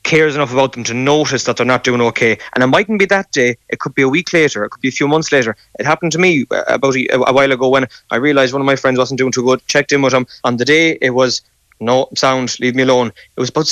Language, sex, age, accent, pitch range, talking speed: English, male, 20-39, Irish, 120-140 Hz, 295 wpm